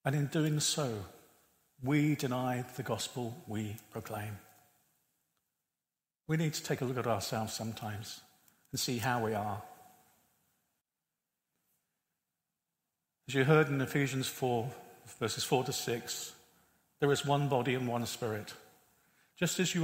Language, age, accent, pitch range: English, 50-69, British, 115-150 Hz